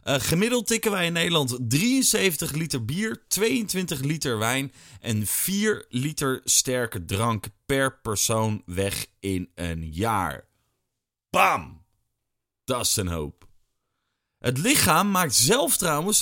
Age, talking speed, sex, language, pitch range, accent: 30-49, 120 wpm, male, Dutch, 100-165 Hz, Dutch